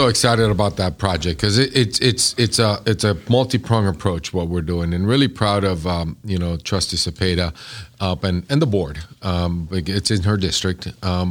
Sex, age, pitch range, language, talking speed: male, 50-69, 85-105 Hz, English, 195 wpm